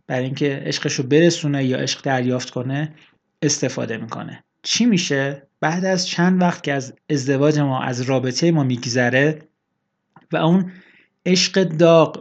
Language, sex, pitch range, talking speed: Persian, male, 135-170 Hz, 145 wpm